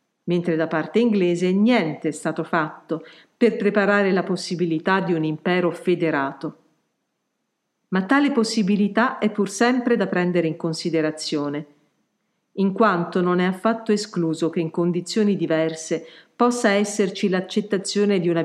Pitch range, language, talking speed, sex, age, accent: 175-230 Hz, Italian, 135 wpm, female, 50-69, native